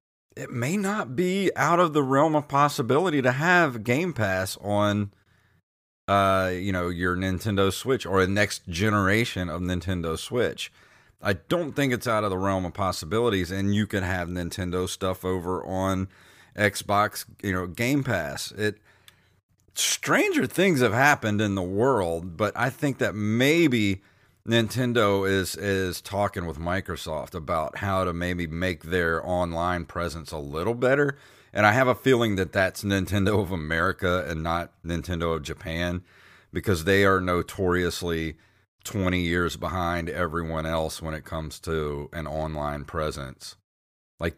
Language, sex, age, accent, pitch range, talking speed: English, male, 30-49, American, 90-105 Hz, 155 wpm